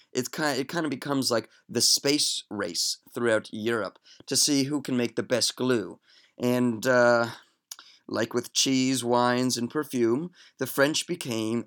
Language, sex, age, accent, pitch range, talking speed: English, male, 30-49, American, 110-130 Hz, 150 wpm